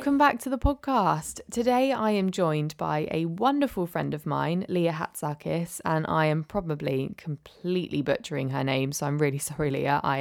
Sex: female